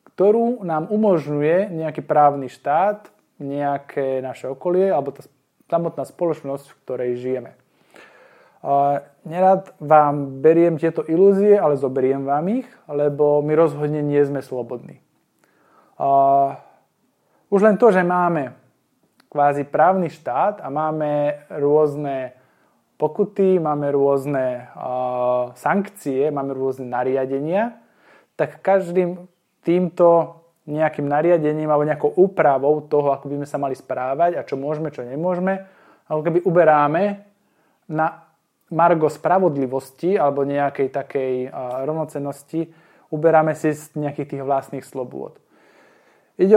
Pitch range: 140-175 Hz